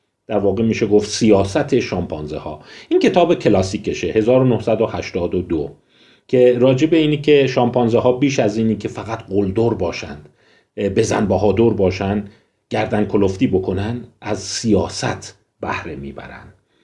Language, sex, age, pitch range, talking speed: Persian, male, 40-59, 105-125 Hz, 125 wpm